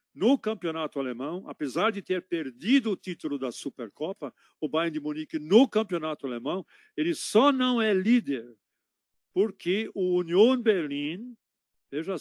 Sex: male